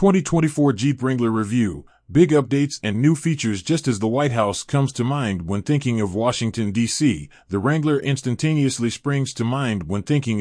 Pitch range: 110-145 Hz